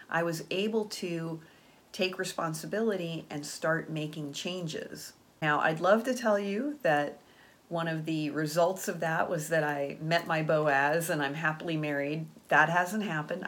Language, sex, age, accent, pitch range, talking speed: English, female, 40-59, American, 155-200 Hz, 160 wpm